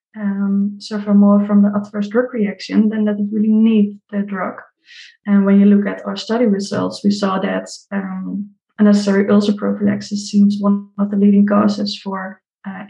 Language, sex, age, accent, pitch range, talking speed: English, female, 20-39, Dutch, 200-210 Hz, 175 wpm